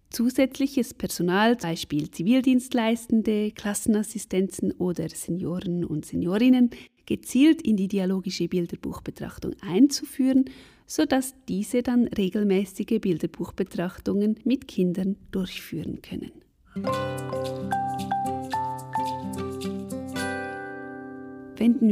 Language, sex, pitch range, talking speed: German, female, 180-230 Hz, 70 wpm